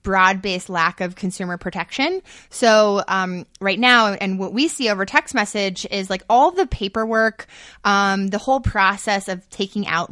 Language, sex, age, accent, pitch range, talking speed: English, female, 20-39, American, 190-225 Hz, 170 wpm